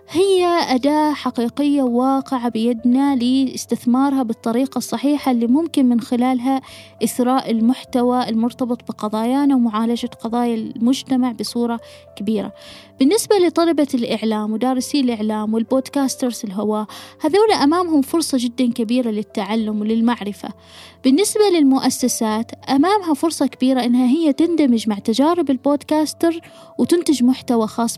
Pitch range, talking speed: 230-290 Hz, 105 wpm